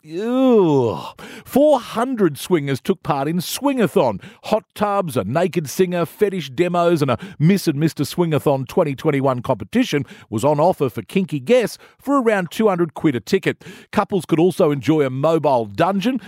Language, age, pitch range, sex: English, 50-69, 155-235 Hz, male